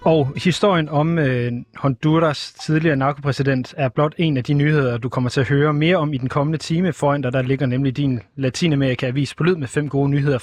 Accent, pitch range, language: native, 125-155 Hz, Danish